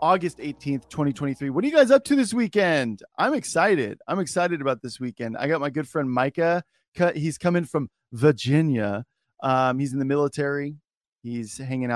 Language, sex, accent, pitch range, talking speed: English, male, American, 120-145 Hz, 175 wpm